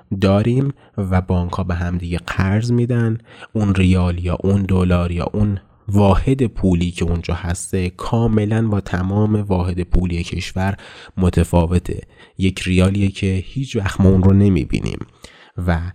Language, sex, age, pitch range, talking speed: Persian, male, 30-49, 85-110 Hz, 140 wpm